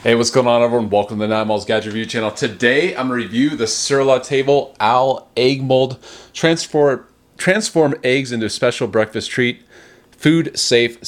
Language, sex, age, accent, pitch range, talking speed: English, male, 30-49, American, 110-130 Hz, 180 wpm